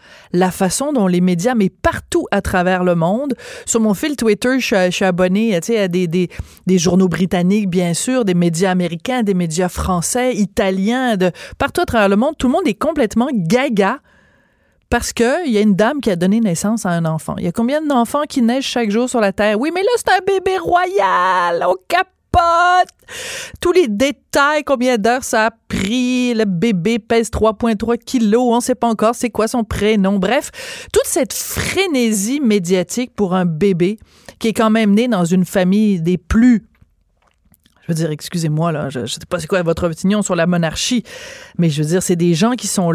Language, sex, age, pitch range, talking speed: French, female, 30-49, 185-250 Hz, 205 wpm